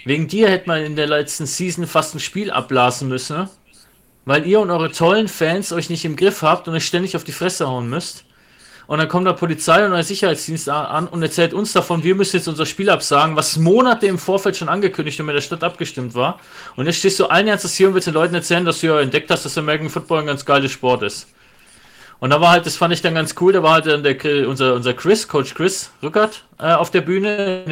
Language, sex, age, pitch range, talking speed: German, male, 30-49, 145-180 Hz, 245 wpm